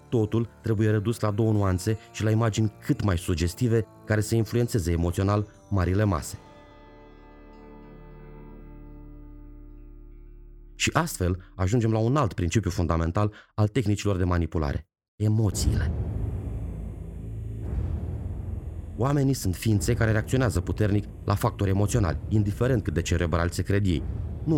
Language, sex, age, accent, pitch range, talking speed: Romanian, male, 30-49, native, 90-110 Hz, 115 wpm